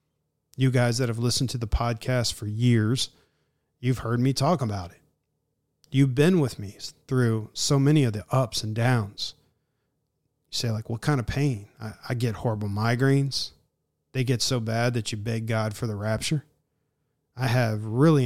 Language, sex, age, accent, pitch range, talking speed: English, male, 40-59, American, 115-135 Hz, 180 wpm